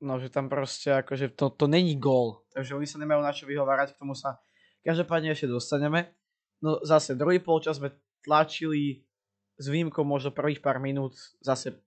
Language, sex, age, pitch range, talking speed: Slovak, male, 20-39, 130-150 Hz, 175 wpm